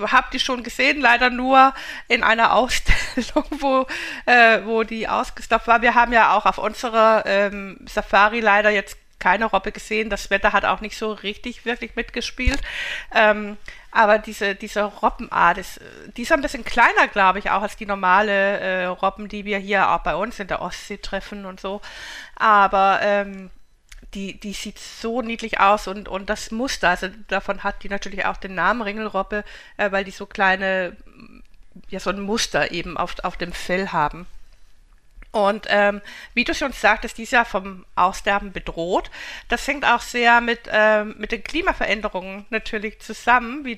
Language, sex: German, female